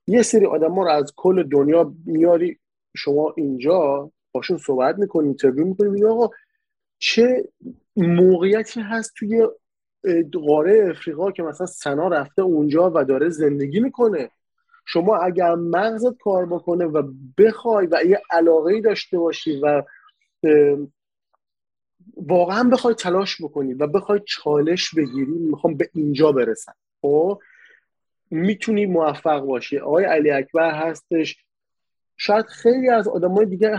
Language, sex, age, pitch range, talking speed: Persian, male, 30-49, 150-220 Hz, 120 wpm